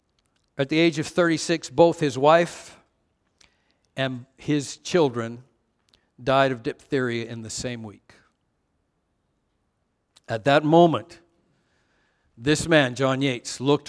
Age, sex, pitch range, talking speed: 60-79, male, 125-160 Hz, 110 wpm